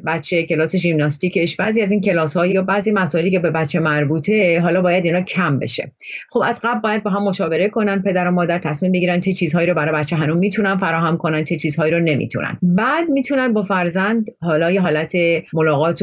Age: 30-49